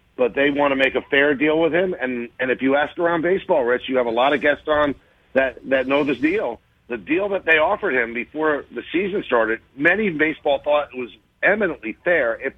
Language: English